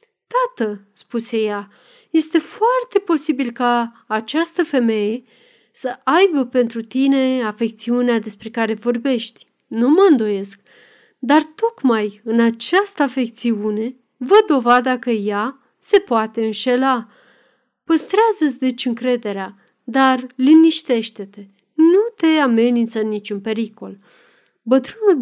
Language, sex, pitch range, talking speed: Romanian, female, 225-295 Hz, 100 wpm